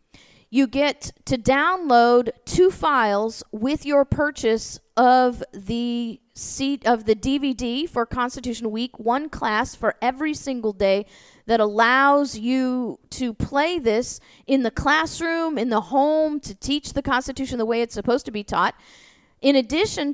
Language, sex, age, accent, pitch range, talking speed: English, female, 40-59, American, 225-275 Hz, 145 wpm